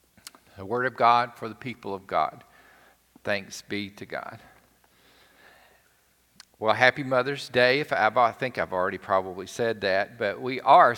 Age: 50-69